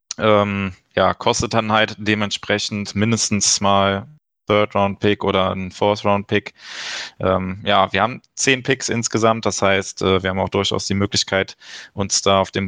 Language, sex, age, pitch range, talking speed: German, male, 20-39, 100-110 Hz, 135 wpm